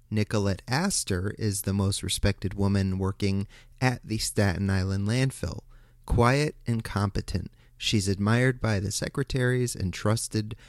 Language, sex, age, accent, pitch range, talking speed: English, male, 30-49, American, 95-115 Hz, 130 wpm